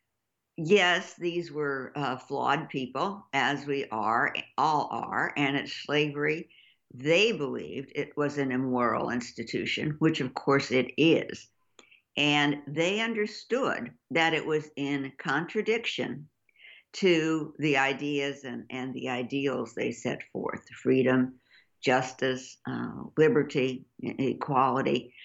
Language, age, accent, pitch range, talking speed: English, 60-79, American, 130-165 Hz, 115 wpm